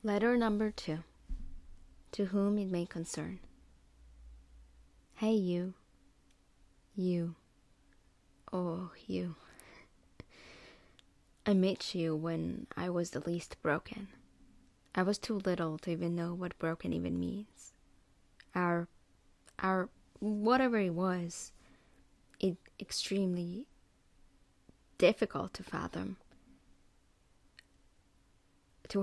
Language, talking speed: English, 90 wpm